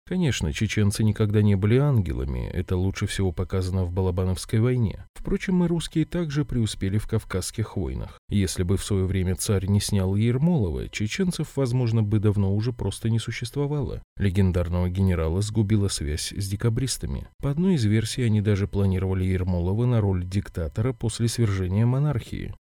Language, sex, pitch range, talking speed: Russian, male, 95-115 Hz, 155 wpm